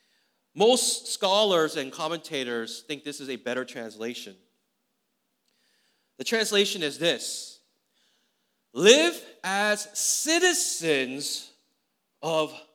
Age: 30-49